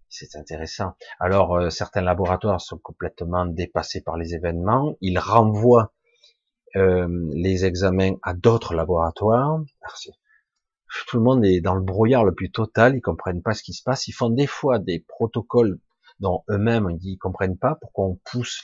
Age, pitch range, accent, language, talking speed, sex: 40-59, 90-120 Hz, French, French, 165 wpm, male